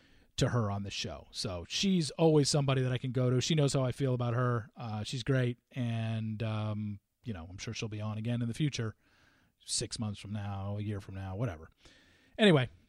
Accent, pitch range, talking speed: American, 120-185 Hz, 220 wpm